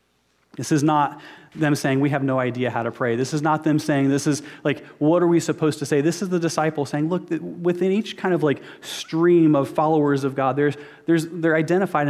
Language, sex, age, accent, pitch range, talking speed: English, male, 30-49, American, 130-165 Hz, 230 wpm